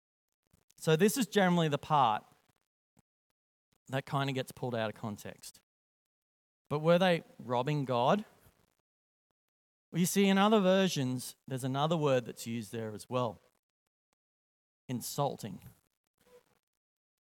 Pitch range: 125-195 Hz